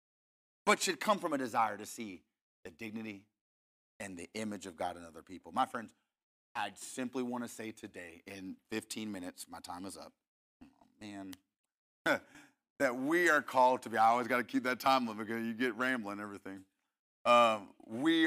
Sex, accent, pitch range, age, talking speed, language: male, American, 115-190 Hz, 30-49, 180 wpm, English